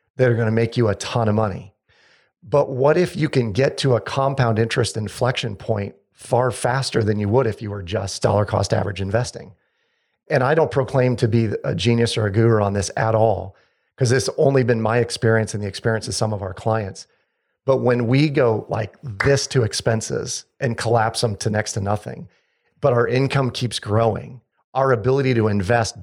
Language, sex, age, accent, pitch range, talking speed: English, male, 40-59, American, 105-125 Hz, 200 wpm